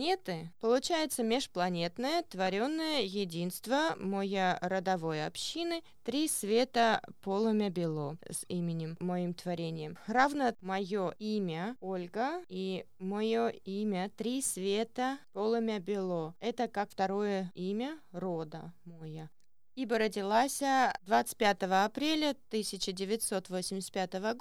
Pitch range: 185-235 Hz